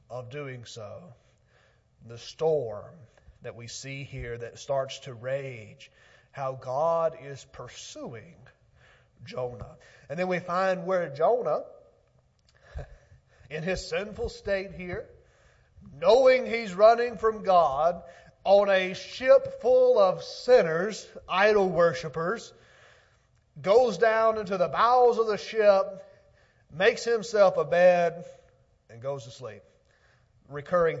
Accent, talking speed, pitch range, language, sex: American, 115 wpm, 130-190 Hz, English, male